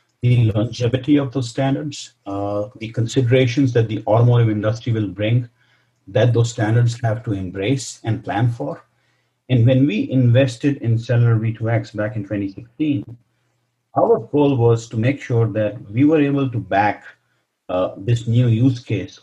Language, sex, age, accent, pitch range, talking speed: English, male, 50-69, Indian, 100-125 Hz, 155 wpm